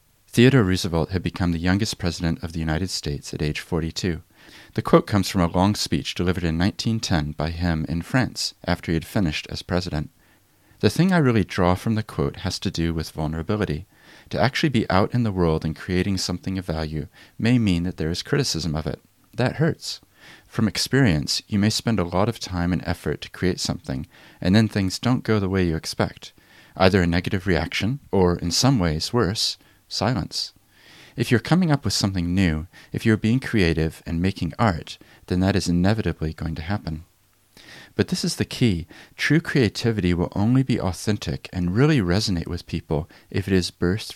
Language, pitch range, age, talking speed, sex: English, 85-110 Hz, 40-59, 195 wpm, male